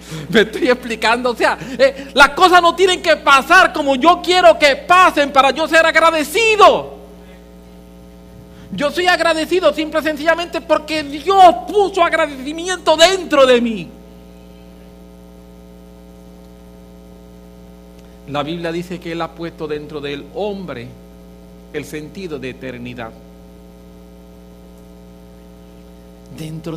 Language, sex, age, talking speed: English, male, 50-69, 110 wpm